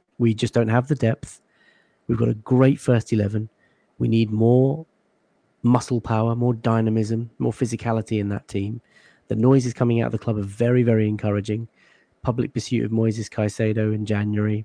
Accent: British